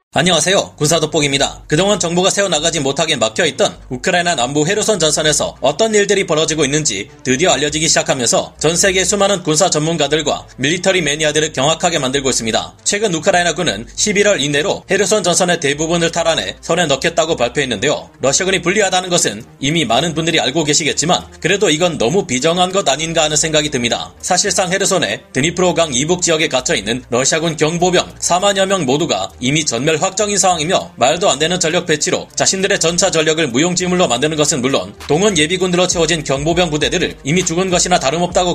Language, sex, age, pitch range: Korean, male, 30-49, 150-185 Hz